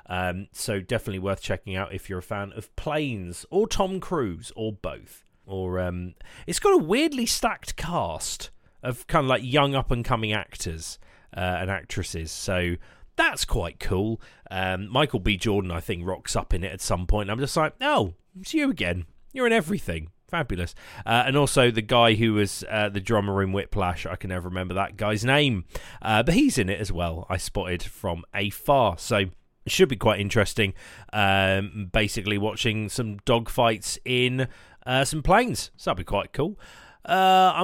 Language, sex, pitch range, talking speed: English, male, 95-135 Hz, 180 wpm